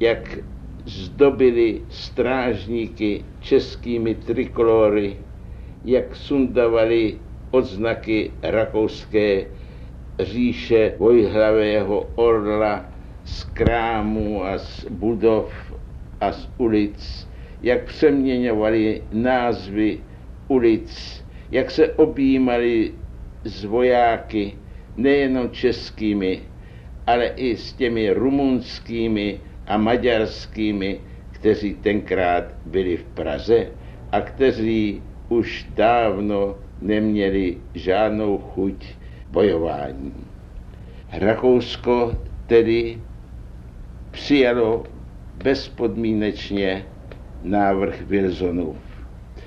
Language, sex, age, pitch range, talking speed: Czech, male, 60-79, 95-120 Hz, 70 wpm